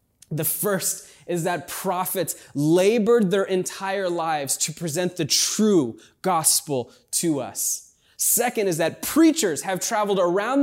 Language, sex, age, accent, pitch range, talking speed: English, male, 20-39, American, 140-210 Hz, 130 wpm